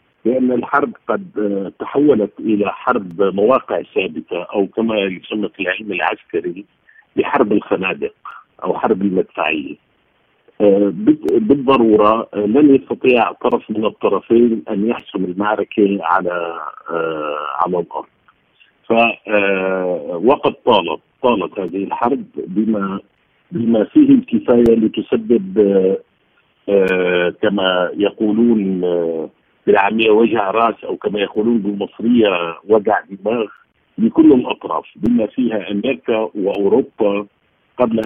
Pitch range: 95-115 Hz